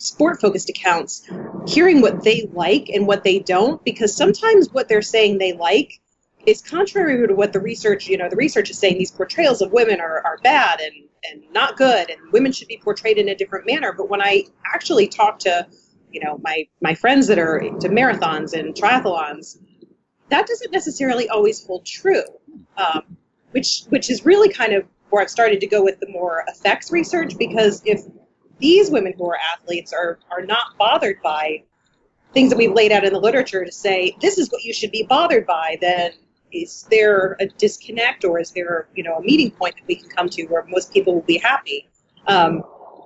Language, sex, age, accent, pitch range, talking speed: English, female, 30-49, American, 185-265 Hz, 200 wpm